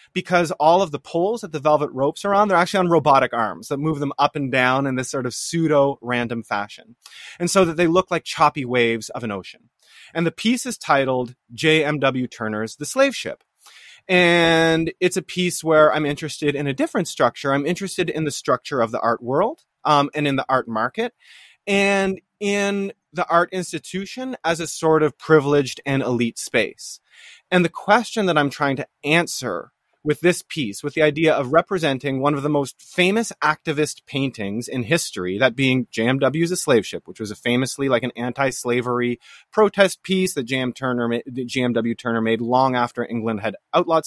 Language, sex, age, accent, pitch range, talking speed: English, male, 30-49, American, 130-180 Hz, 190 wpm